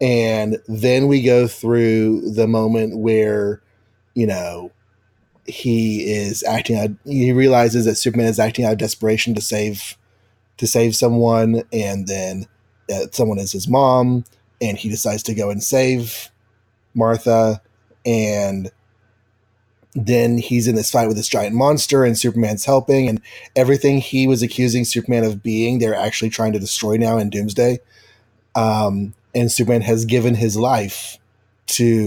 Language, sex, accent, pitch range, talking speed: English, male, American, 110-120 Hz, 150 wpm